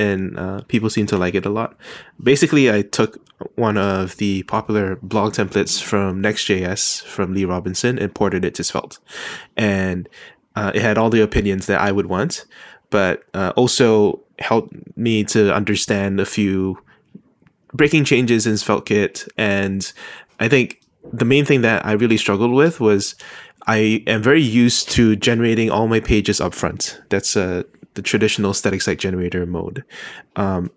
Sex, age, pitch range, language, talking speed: male, 20-39, 95-110 Hz, English, 160 wpm